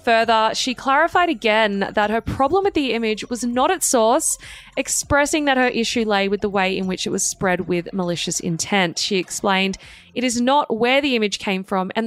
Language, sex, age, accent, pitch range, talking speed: English, female, 20-39, Australian, 195-245 Hz, 205 wpm